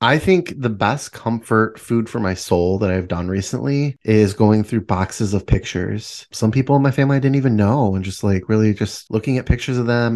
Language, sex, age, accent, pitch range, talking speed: English, male, 20-39, American, 100-130 Hz, 225 wpm